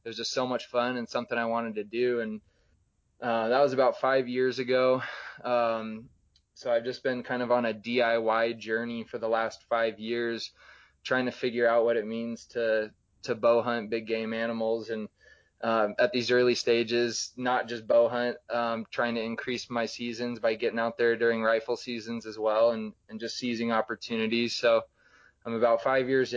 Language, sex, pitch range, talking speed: English, male, 115-120 Hz, 195 wpm